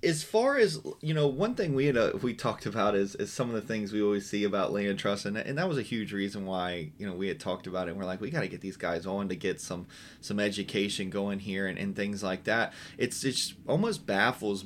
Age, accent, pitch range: 20-39, American, 100-125 Hz